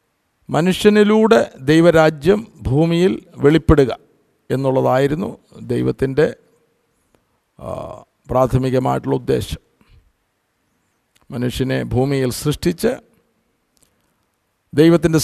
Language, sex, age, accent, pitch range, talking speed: Malayalam, male, 50-69, native, 130-170 Hz, 45 wpm